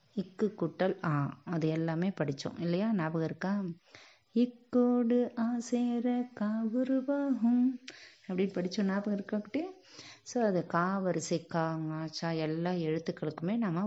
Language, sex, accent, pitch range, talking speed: Tamil, female, native, 165-225 Hz, 110 wpm